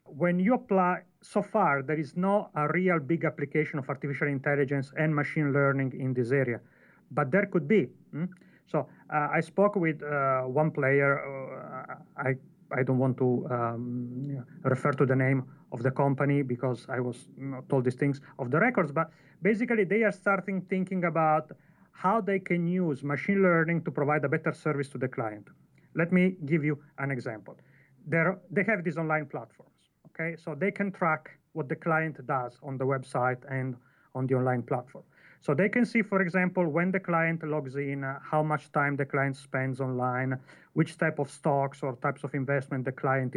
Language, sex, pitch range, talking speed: English, male, 135-180 Hz, 195 wpm